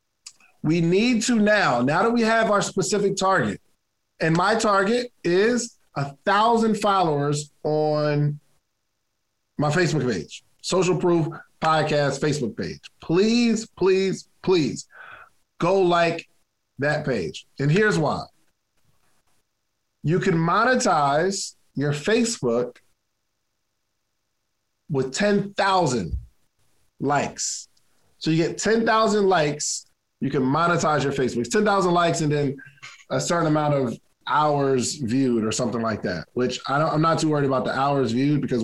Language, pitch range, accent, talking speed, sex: English, 125-190 Hz, American, 125 wpm, male